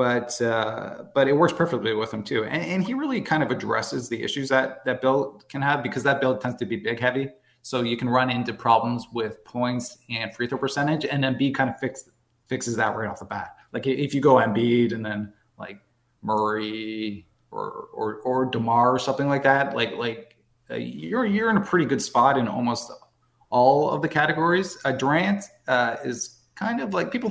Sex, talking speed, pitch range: male, 210 wpm, 120-140 Hz